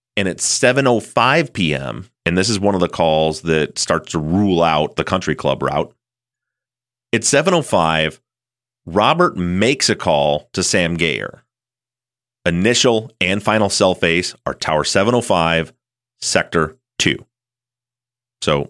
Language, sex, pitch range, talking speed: English, male, 80-120 Hz, 130 wpm